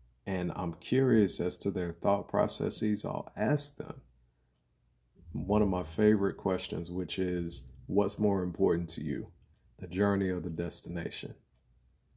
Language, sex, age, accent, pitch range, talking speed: English, male, 30-49, American, 85-100 Hz, 140 wpm